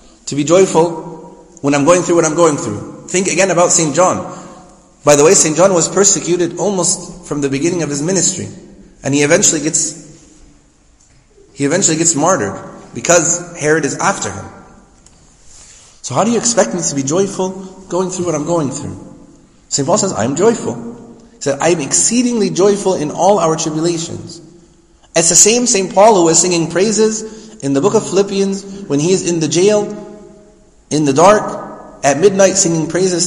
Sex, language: male, English